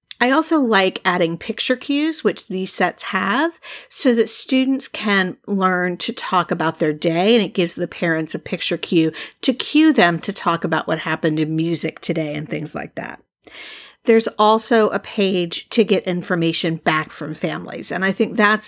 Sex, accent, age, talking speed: female, American, 50-69, 185 wpm